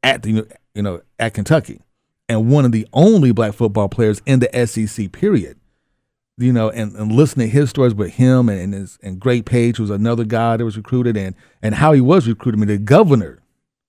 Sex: male